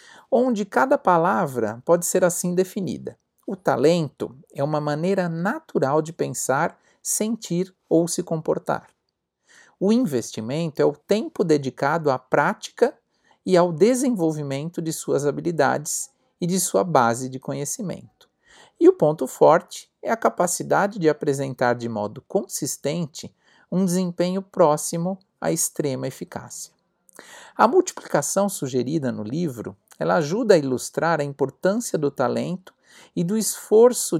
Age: 50-69